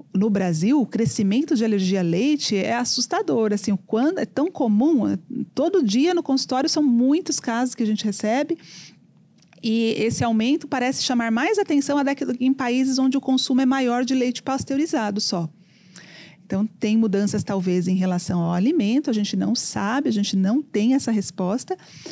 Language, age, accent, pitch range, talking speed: English, 40-59, Brazilian, 190-265 Hz, 170 wpm